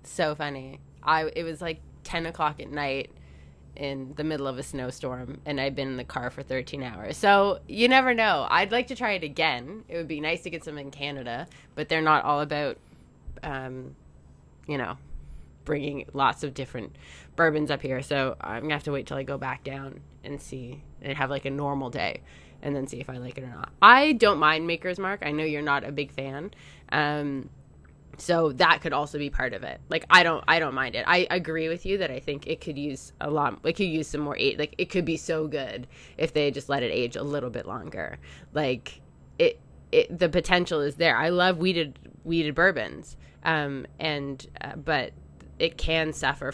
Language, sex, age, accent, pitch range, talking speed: English, female, 20-39, American, 130-160 Hz, 215 wpm